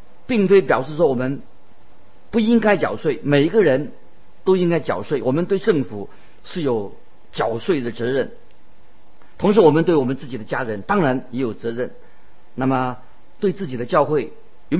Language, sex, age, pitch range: Chinese, male, 50-69, 125-160 Hz